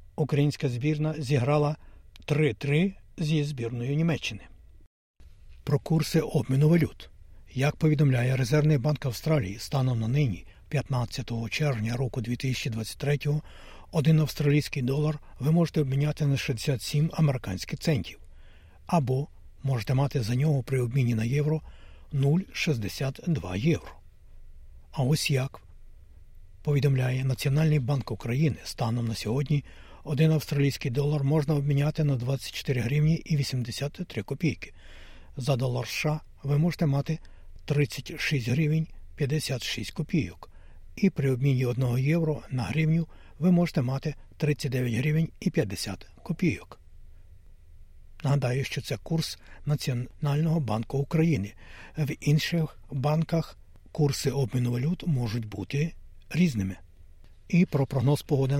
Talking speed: 115 wpm